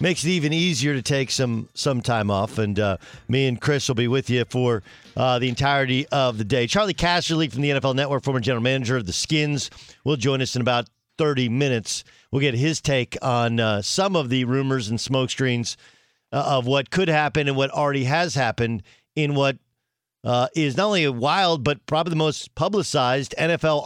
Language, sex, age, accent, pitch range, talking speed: English, male, 50-69, American, 120-155 Hz, 205 wpm